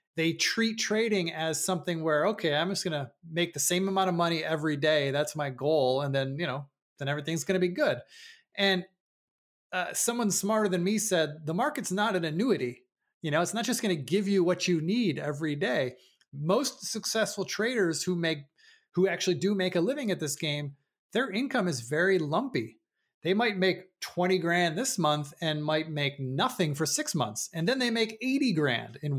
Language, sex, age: English, male, 30-49